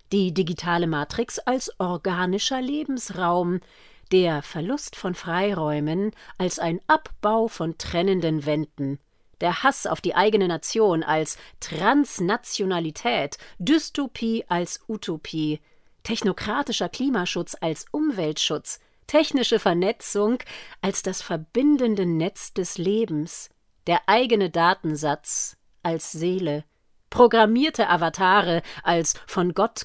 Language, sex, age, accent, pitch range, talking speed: German, female, 40-59, German, 165-225 Hz, 100 wpm